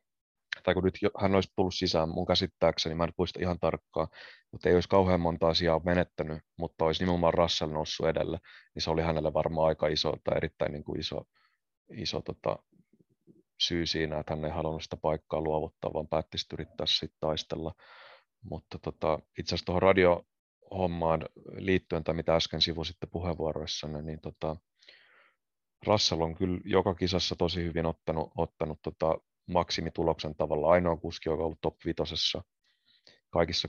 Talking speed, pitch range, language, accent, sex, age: 155 wpm, 80-90 Hz, Finnish, native, male, 30-49